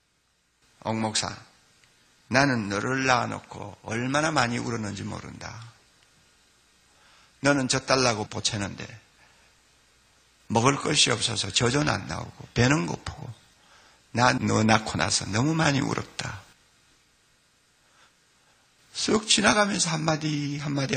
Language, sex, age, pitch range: Korean, male, 60-79, 120-165 Hz